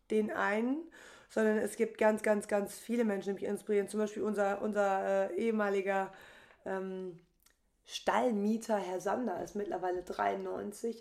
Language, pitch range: German, 195-230 Hz